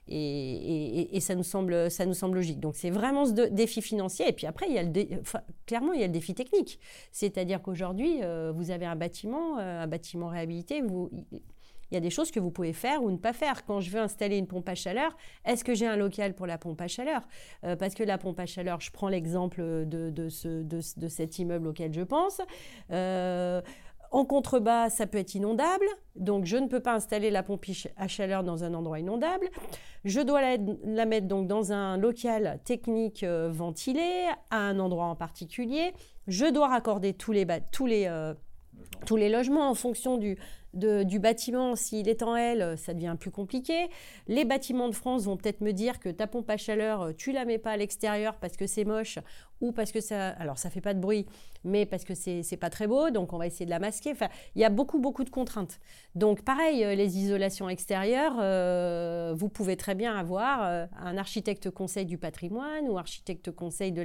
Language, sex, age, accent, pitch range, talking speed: French, female, 30-49, French, 180-230 Hz, 215 wpm